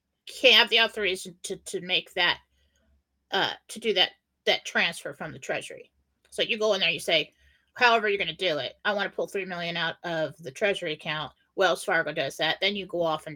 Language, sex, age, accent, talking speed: English, female, 30-49, American, 225 wpm